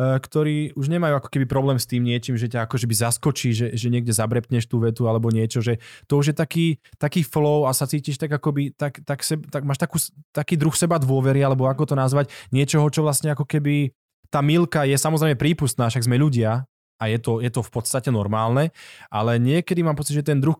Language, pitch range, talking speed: Slovak, 115-140 Hz, 220 wpm